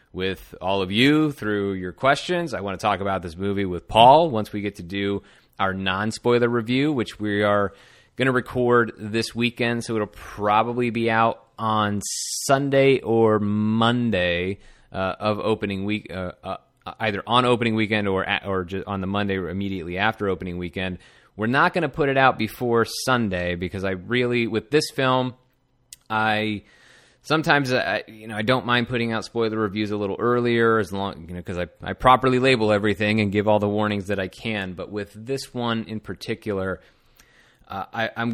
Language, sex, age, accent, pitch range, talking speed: English, male, 30-49, American, 95-120 Hz, 185 wpm